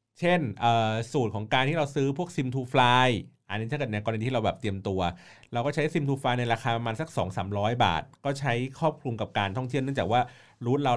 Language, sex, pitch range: Thai, male, 110-145 Hz